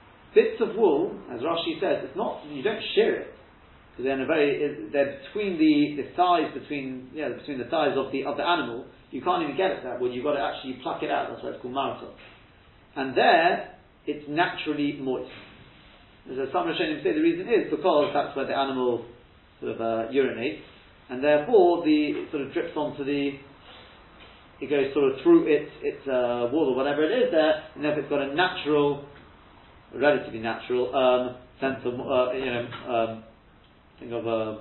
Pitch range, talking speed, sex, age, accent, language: 125-180 Hz, 185 wpm, male, 40-59, British, English